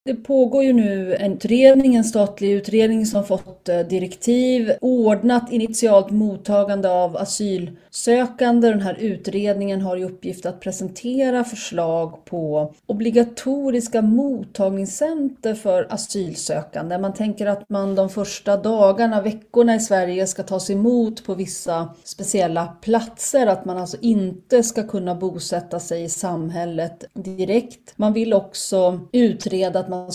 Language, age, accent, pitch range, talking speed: Swedish, 30-49, native, 185-230 Hz, 130 wpm